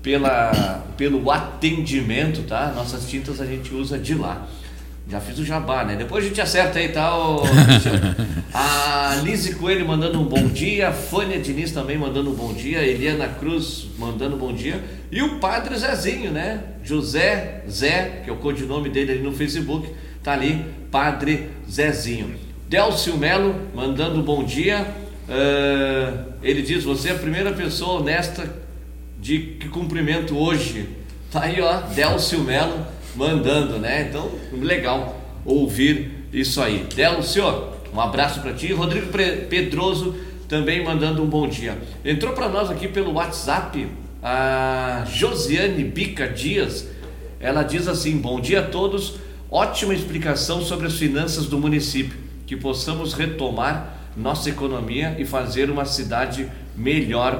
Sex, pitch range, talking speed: male, 130-160 Hz, 145 wpm